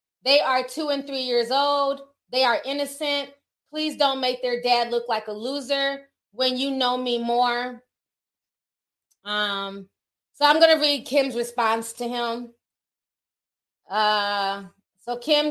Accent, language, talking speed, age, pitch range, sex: American, English, 145 wpm, 20-39, 255-315 Hz, female